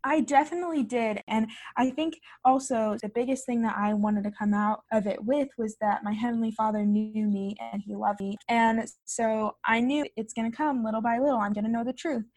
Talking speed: 230 wpm